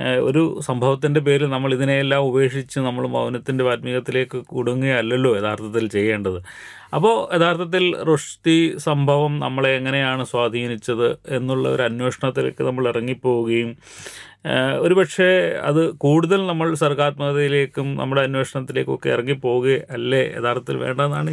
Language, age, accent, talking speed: Malayalam, 30-49, native, 95 wpm